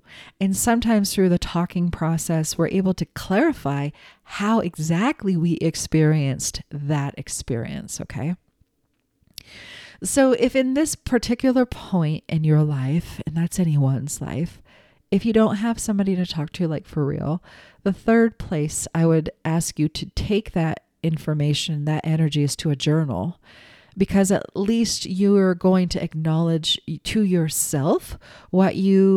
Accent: American